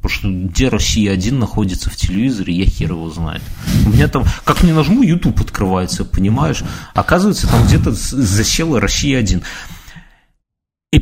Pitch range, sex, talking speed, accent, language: 95-135 Hz, male, 150 wpm, native, Russian